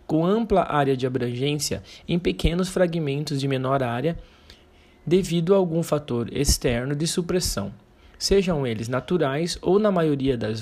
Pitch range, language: 125-165 Hz, Portuguese